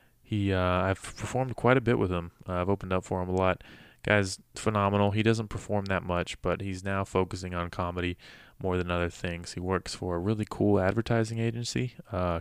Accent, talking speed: American, 210 wpm